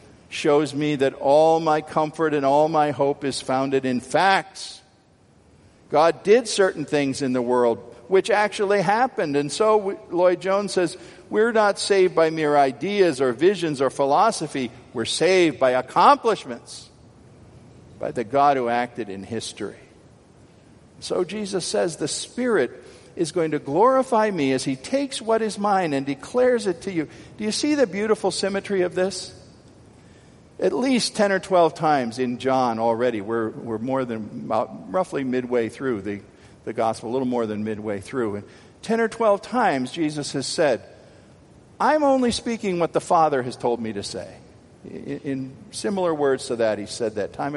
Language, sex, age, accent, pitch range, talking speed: English, male, 50-69, American, 125-190 Hz, 170 wpm